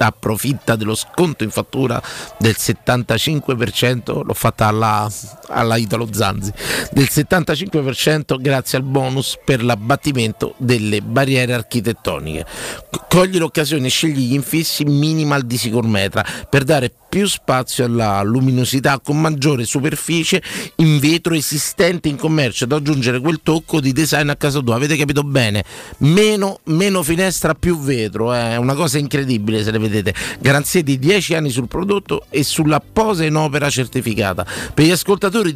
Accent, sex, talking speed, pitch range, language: native, male, 145 wpm, 115-155 Hz, Italian